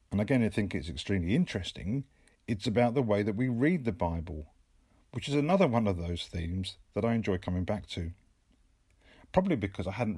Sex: male